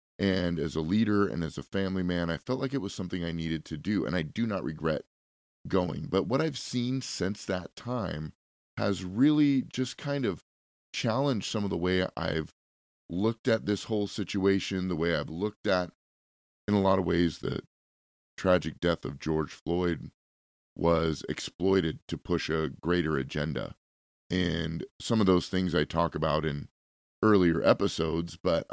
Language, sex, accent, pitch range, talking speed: English, male, American, 75-95 Hz, 175 wpm